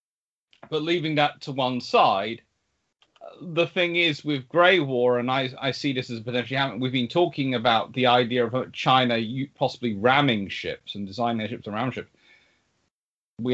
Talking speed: 165 wpm